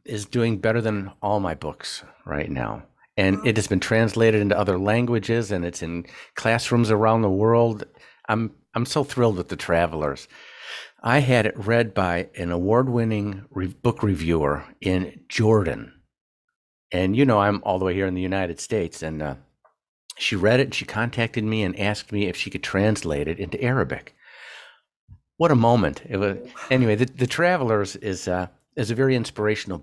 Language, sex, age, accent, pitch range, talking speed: English, male, 50-69, American, 90-115 Hz, 180 wpm